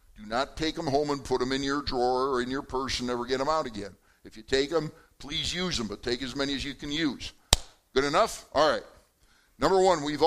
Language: English